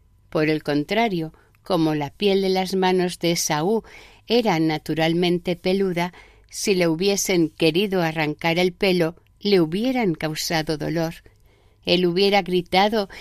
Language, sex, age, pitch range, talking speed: Spanish, female, 50-69, 155-210 Hz, 125 wpm